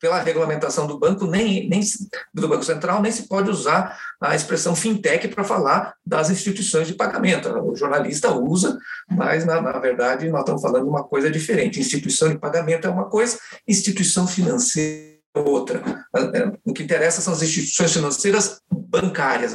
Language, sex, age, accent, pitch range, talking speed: Portuguese, male, 50-69, Brazilian, 165-245 Hz, 165 wpm